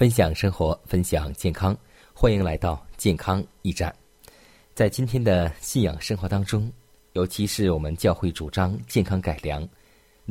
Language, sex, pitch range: Chinese, male, 80-110 Hz